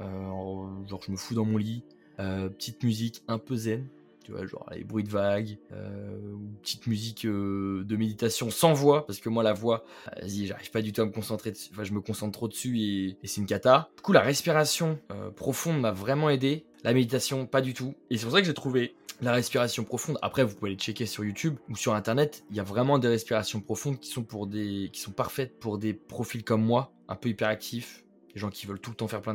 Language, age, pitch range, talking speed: French, 20-39, 105-130 Hz, 245 wpm